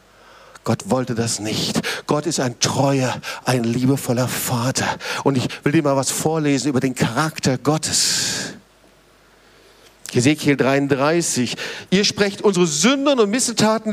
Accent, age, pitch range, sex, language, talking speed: German, 50-69, 130-195 Hz, male, German, 130 wpm